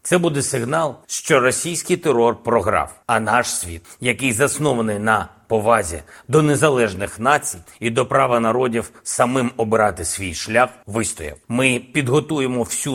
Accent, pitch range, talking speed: native, 115-140 Hz, 135 wpm